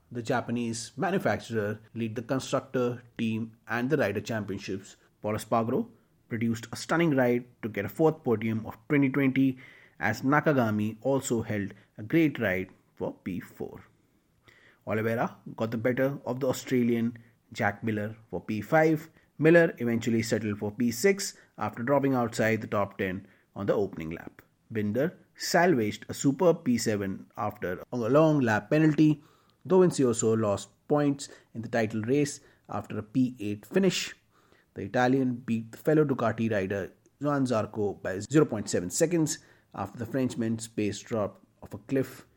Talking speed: 140 wpm